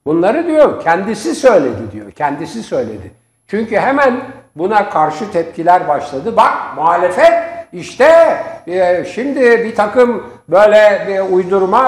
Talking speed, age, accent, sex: 115 wpm, 60-79, native, male